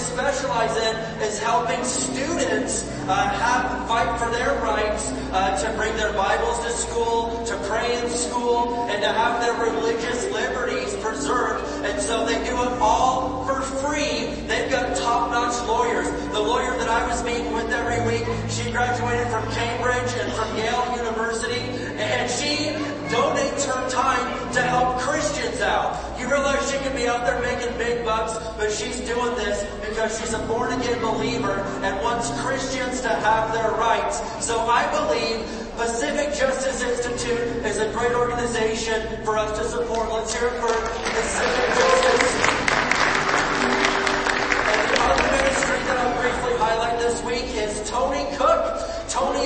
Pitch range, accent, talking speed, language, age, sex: 225-250 Hz, American, 155 wpm, English, 30-49, male